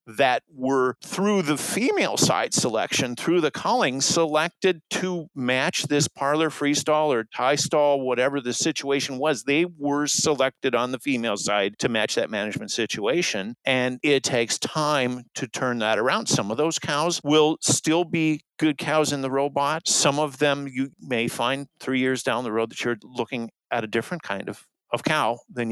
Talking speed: 180 wpm